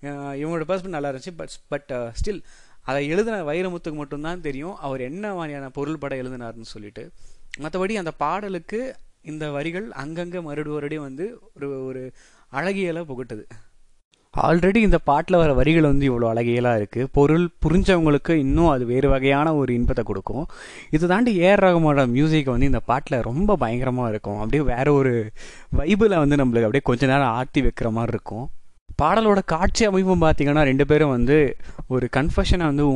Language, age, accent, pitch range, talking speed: Tamil, 20-39, native, 130-170 Hz, 150 wpm